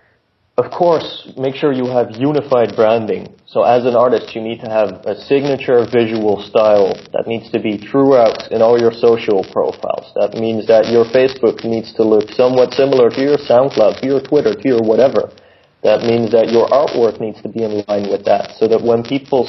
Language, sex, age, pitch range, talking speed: English, male, 30-49, 110-130 Hz, 200 wpm